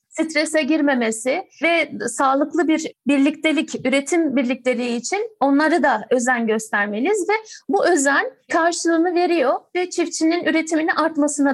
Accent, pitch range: native, 250-335 Hz